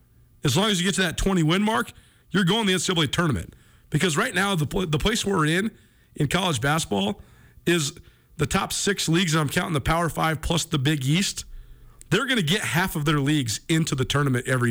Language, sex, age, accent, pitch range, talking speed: English, male, 40-59, American, 140-190 Hz, 220 wpm